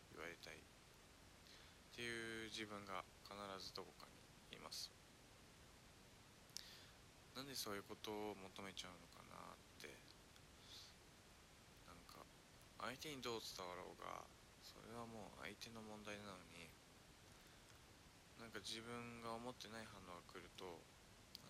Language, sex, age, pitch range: Japanese, male, 20-39, 85-110 Hz